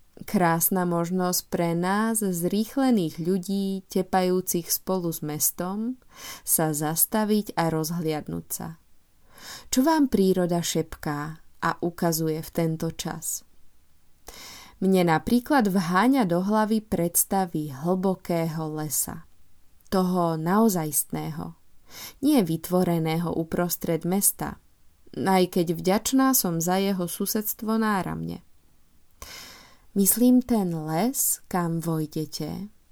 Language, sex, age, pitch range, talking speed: Czech, female, 20-39, 160-195 Hz, 95 wpm